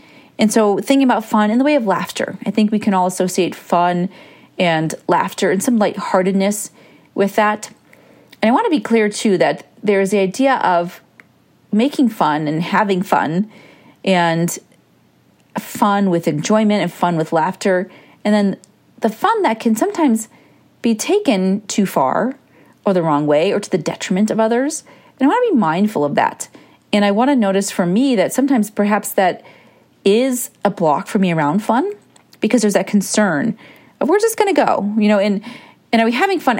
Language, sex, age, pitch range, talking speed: English, female, 40-59, 180-225 Hz, 185 wpm